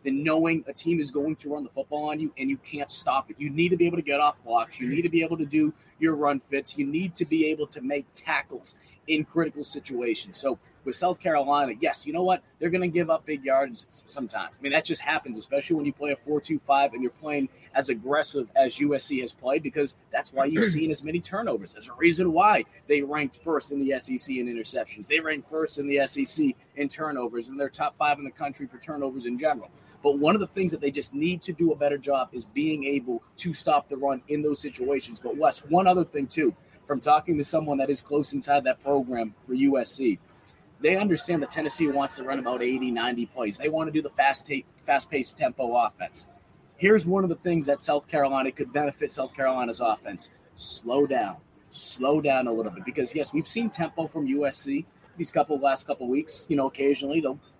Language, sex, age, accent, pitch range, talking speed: English, male, 30-49, American, 135-165 Hz, 235 wpm